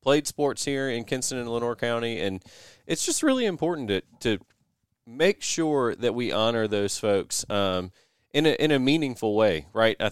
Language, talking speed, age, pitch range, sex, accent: English, 185 wpm, 30-49, 100-125 Hz, male, American